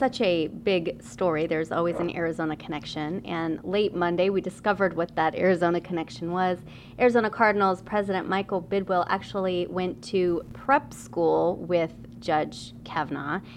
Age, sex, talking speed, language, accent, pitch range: 30-49, female, 140 wpm, English, American, 155-180 Hz